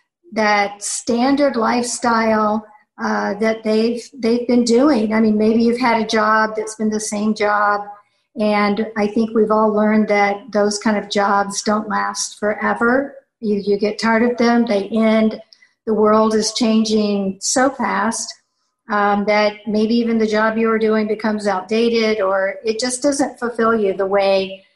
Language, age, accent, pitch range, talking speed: English, 50-69, American, 205-235 Hz, 165 wpm